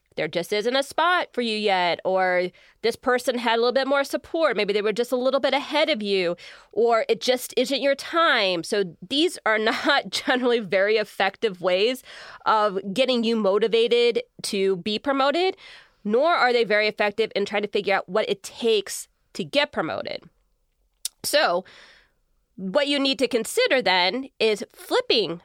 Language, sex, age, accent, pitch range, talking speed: English, female, 20-39, American, 200-270 Hz, 170 wpm